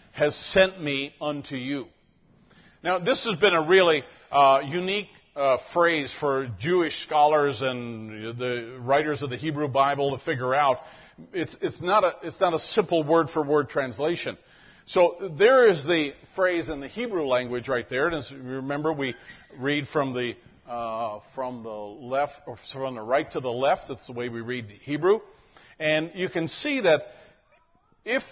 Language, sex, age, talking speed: English, male, 50-69, 175 wpm